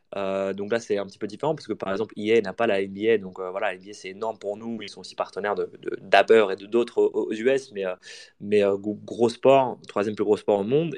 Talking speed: 255 wpm